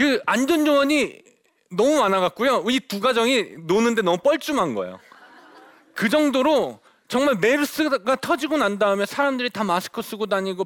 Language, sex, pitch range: Korean, male, 185-265 Hz